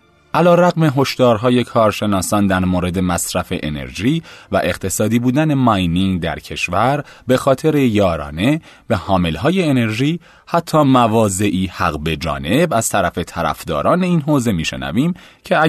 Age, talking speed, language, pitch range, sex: 30-49, 125 wpm, Persian, 80-135 Hz, male